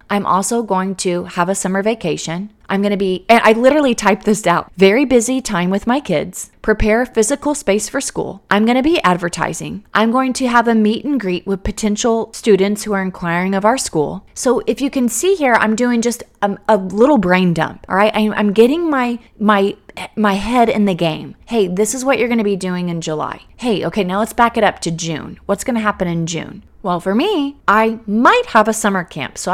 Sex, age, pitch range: female, 30-49, 175-225 Hz